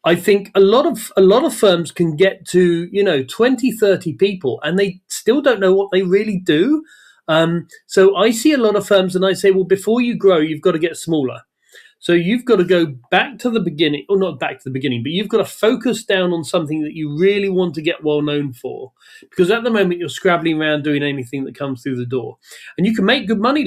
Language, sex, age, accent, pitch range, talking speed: English, male, 30-49, British, 150-205 Hz, 250 wpm